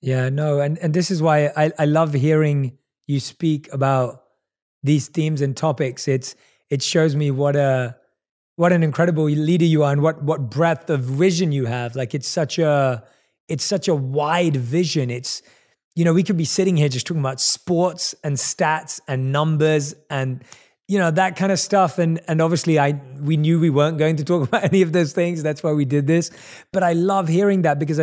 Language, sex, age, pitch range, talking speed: English, male, 20-39, 140-170 Hz, 210 wpm